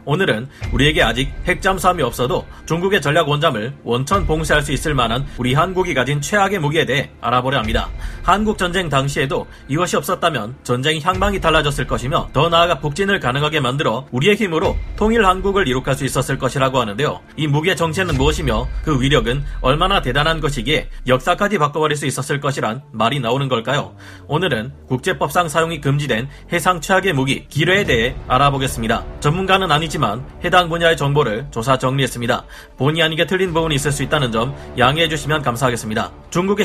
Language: Korean